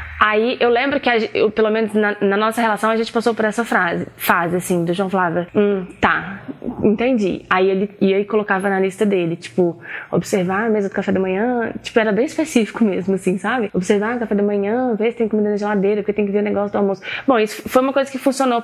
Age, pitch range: 20-39, 200-250 Hz